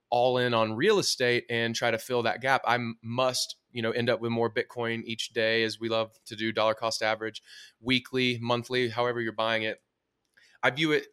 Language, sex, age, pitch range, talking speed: English, male, 20-39, 110-130 Hz, 210 wpm